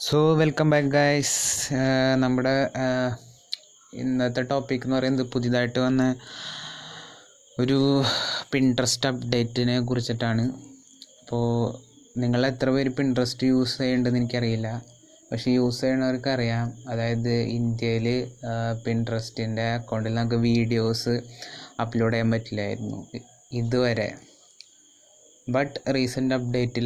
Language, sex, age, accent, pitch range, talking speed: Malayalam, male, 20-39, native, 115-130 Hz, 85 wpm